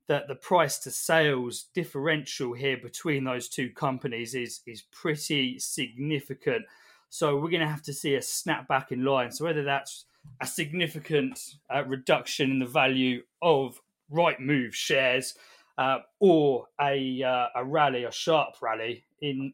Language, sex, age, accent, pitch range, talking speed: English, male, 20-39, British, 130-165 Hz, 155 wpm